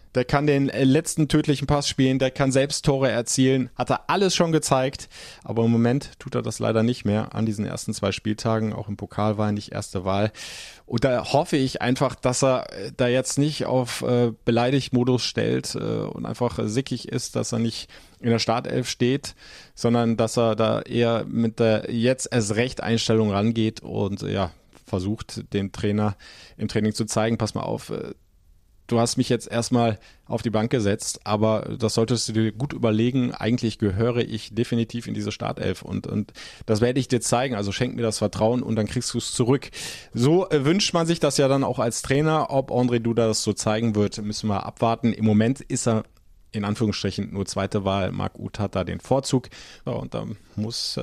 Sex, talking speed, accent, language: male, 195 wpm, German, German